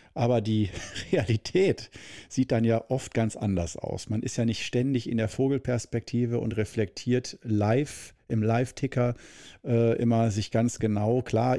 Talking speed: 145 wpm